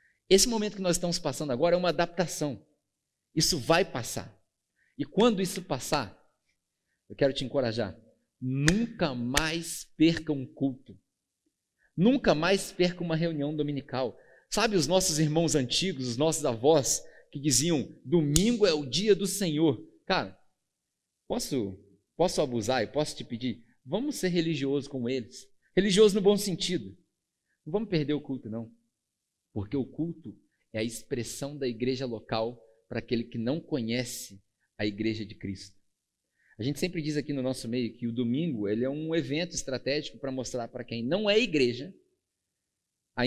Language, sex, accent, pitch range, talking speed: Portuguese, male, Brazilian, 120-170 Hz, 155 wpm